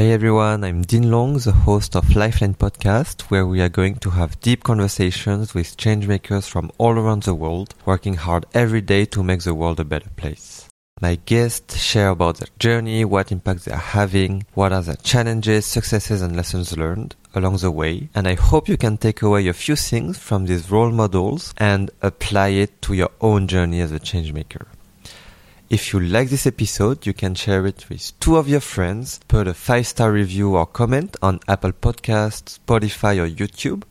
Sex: male